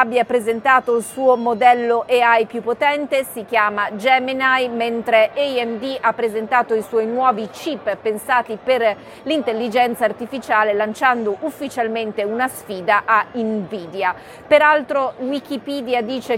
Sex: female